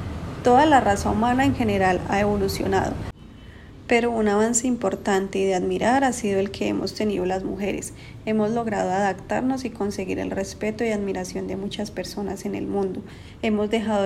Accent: Colombian